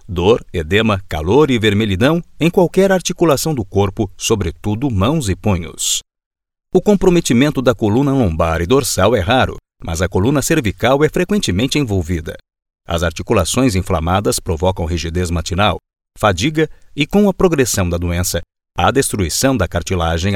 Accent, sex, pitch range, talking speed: Brazilian, male, 90-135 Hz, 140 wpm